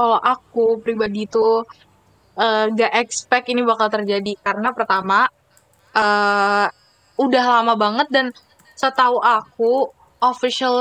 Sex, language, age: female, Indonesian, 10-29